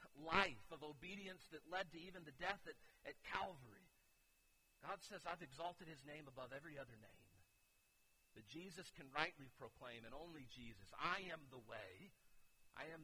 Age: 50-69